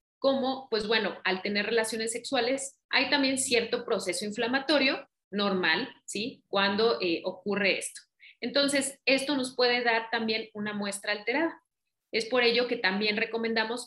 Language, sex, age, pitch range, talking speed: Spanish, female, 30-49, 195-240 Hz, 145 wpm